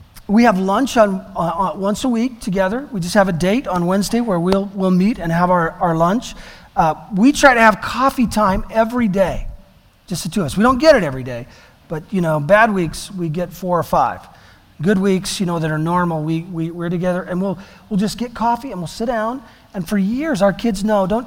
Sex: male